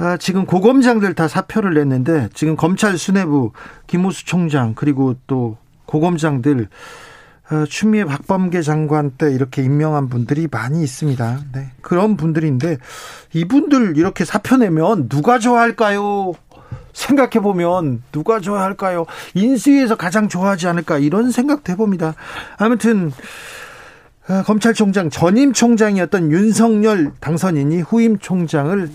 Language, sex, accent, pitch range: Korean, male, native, 150-210 Hz